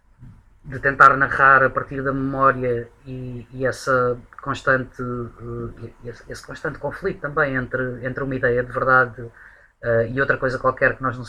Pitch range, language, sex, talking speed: 130-150 Hz, Portuguese, female, 150 wpm